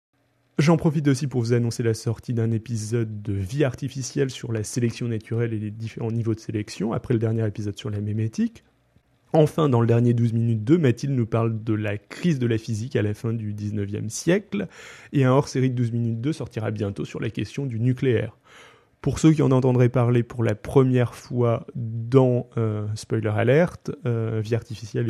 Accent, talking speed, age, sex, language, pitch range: French, 200 wpm, 20-39, male, French, 110-130 Hz